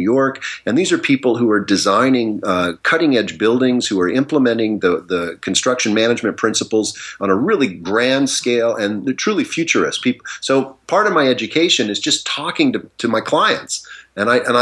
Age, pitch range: 40-59, 100-130 Hz